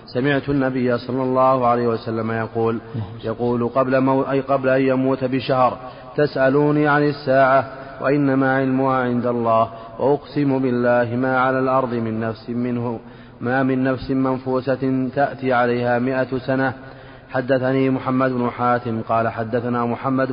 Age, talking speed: 30-49, 135 wpm